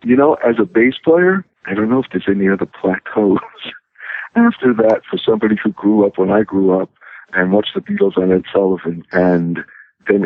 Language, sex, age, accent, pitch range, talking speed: English, male, 60-79, American, 90-115 Hz, 200 wpm